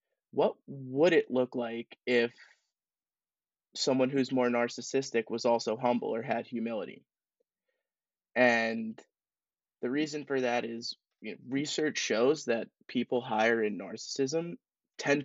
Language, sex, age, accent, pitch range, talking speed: English, male, 20-39, American, 115-135 Hz, 120 wpm